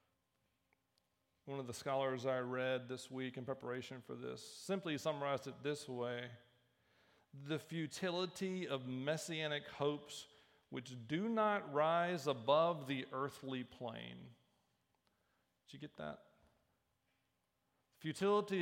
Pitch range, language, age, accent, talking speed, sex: 125-165 Hz, English, 40-59, American, 115 wpm, male